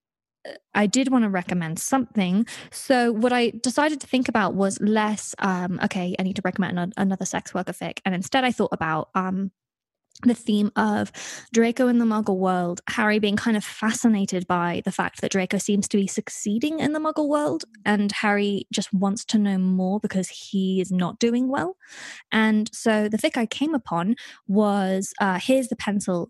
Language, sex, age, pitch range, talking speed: English, female, 20-39, 190-230 Hz, 185 wpm